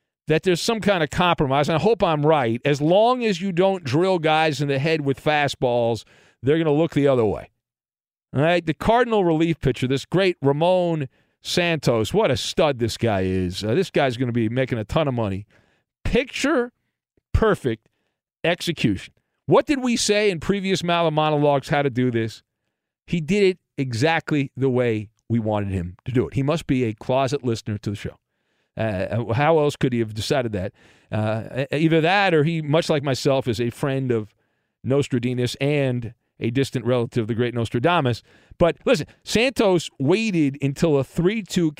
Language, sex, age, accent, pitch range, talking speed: English, male, 50-69, American, 125-180 Hz, 185 wpm